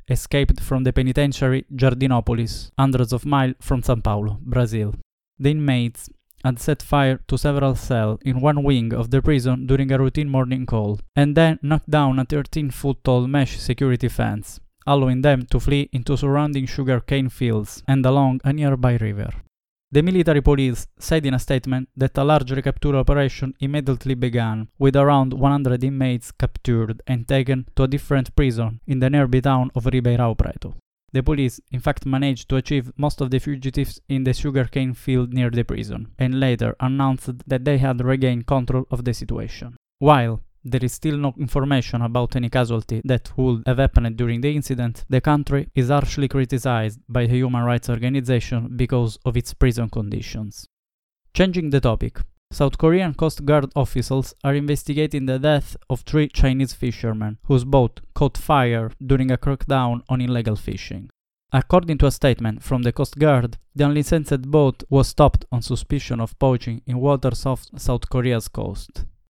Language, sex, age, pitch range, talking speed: English, male, 20-39, 120-140 Hz, 170 wpm